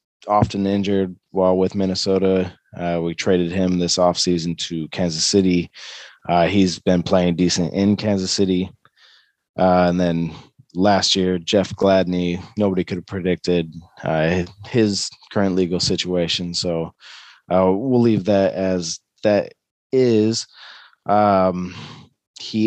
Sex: male